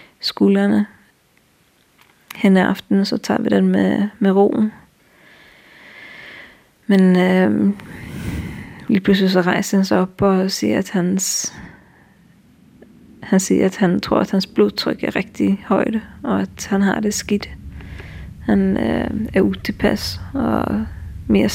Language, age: Danish, 30-49